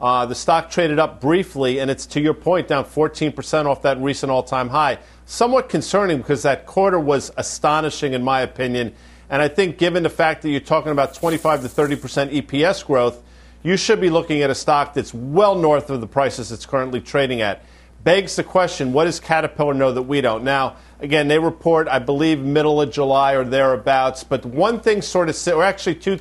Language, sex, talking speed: English, male, 205 wpm